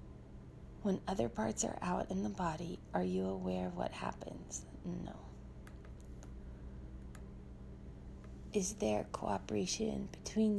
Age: 20-39